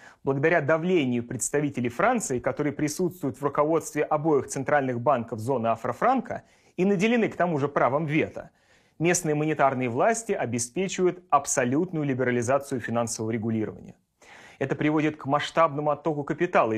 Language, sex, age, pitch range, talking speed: Russian, male, 30-49, 125-160 Hz, 120 wpm